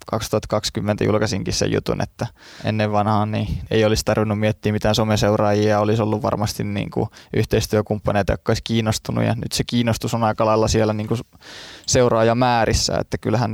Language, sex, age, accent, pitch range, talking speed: Finnish, male, 20-39, native, 105-115 Hz, 160 wpm